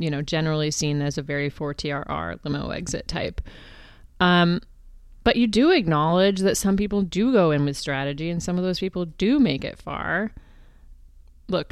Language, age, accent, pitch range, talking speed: English, 30-49, American, 150-185 Hz, 175 wpm